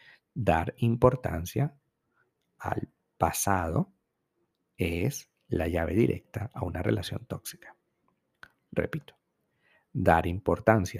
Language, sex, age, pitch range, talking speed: Spanish, male, 50-69, 85-120 Hz, 80 wpm